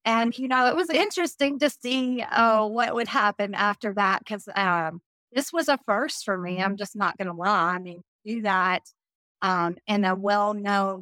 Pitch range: 185-225 Hz